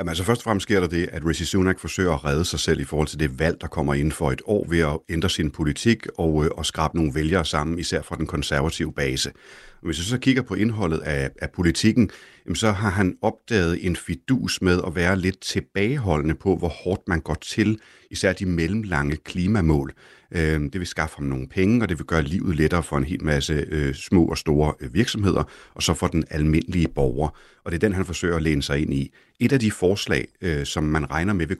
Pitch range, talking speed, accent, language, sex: 75-95 Hz, 230 wpm, native, Danish, male